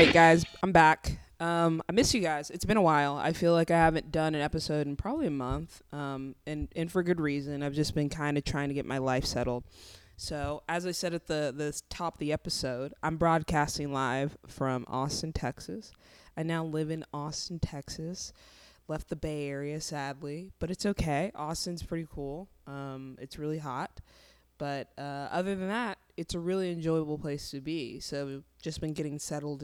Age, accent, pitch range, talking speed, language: 20-39, American, 135-165 Hz, 195 wpm, English